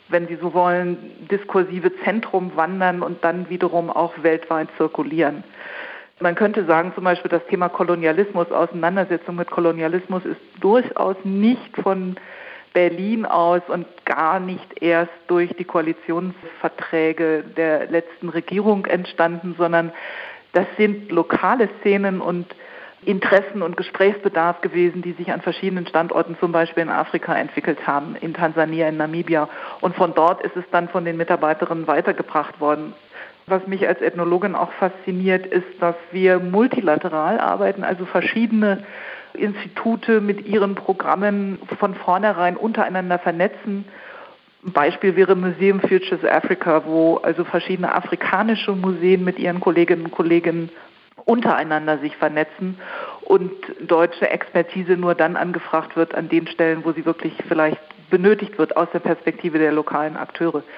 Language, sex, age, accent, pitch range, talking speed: German, female, 40-59, German, 165-190 Hz, 135 wpm